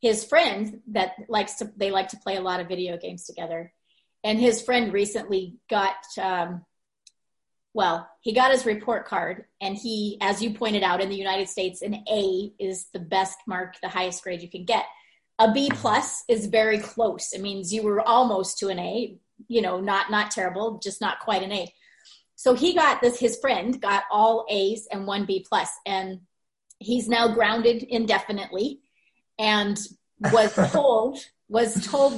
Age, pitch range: 30-49, 195-235 Hz